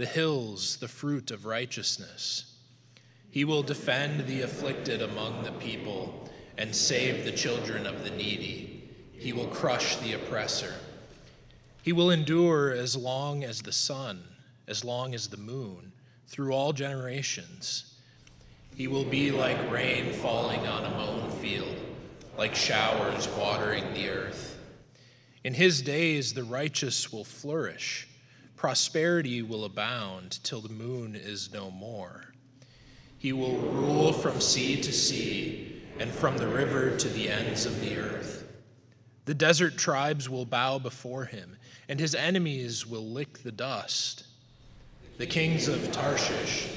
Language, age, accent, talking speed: English, 20-39, American, 140 wpm